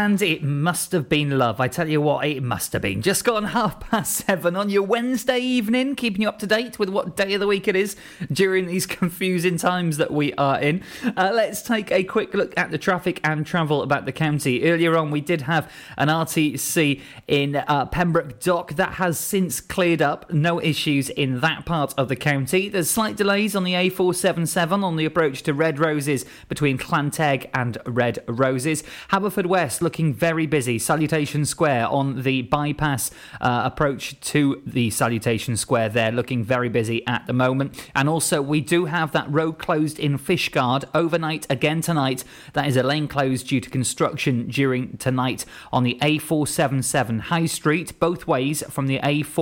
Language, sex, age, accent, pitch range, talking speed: English, male, 20-39, British, 135-180 Hz, 190 wpm